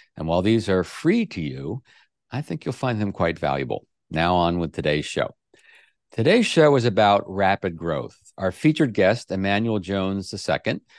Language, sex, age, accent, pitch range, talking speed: English, male, 50-69, American, 85-120 Hz, 170 wpm